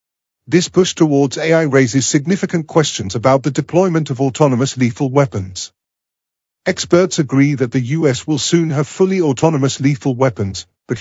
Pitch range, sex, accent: 125-160 Hz, male, British